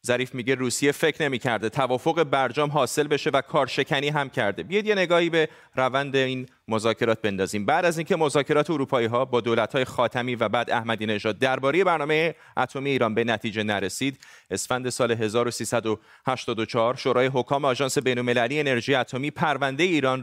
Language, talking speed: Persian, 155 wpm